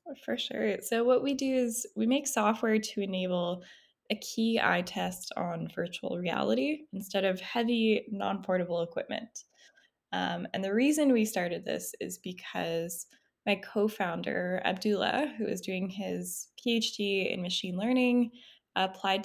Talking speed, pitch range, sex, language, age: 140 wpm, 190-255 Hz, female, English, 10-29